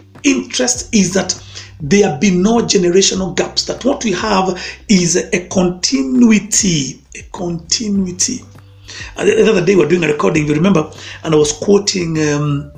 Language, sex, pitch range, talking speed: English, male, 150-205 Hz, 145 wpm